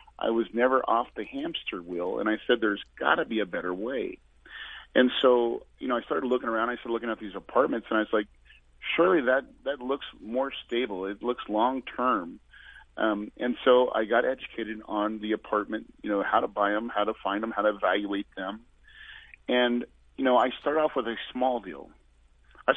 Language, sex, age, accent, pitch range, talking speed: English, male, 40-59, American, 110-130 Hz, 205 wpm